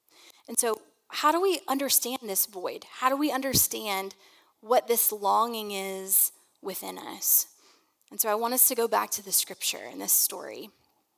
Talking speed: 170 wpm